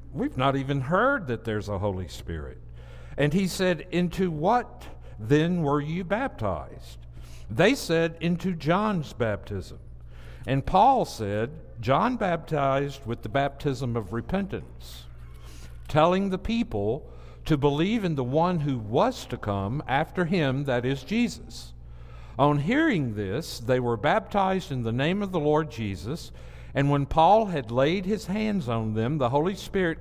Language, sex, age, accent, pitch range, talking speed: English, male, 60-79, American, 110-180 Hz, 150 wpm